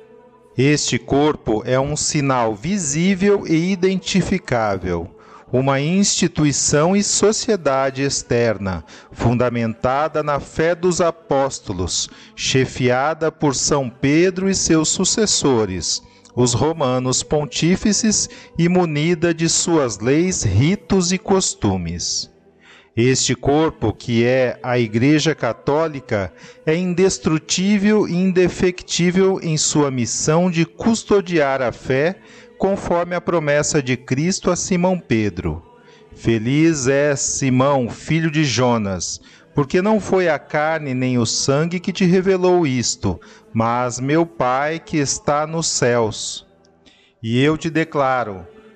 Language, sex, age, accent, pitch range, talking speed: Portuguese, male, 40-59, Brazilian, 125-180 Hz, 110 wpm